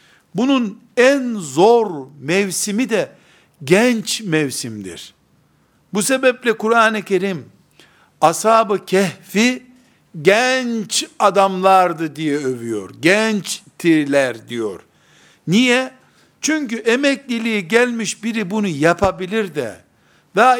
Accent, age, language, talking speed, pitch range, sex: native, 60-79, Turkish, 85 wpm, 170-225 Hz, male